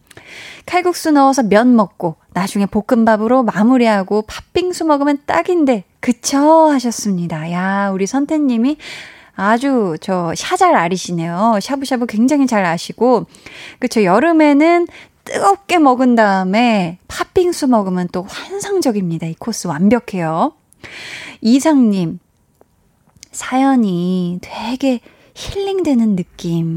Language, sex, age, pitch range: Korean, female, 20-39, 190-275 Hz